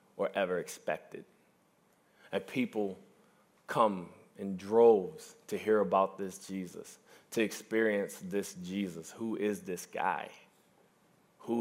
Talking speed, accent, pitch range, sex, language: 110 wpm, American, 100-150 Hz, male, English